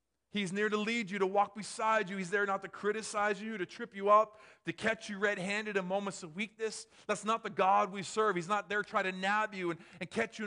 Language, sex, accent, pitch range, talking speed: English, male, American, 165-205 Hz, 250 wpm